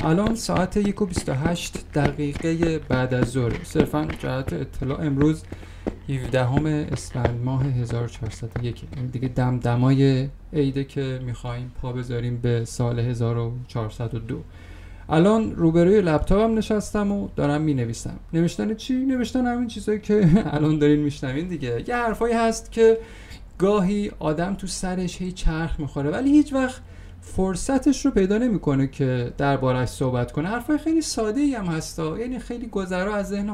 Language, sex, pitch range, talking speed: Persian, male, 125-190 Hz, 140 wpm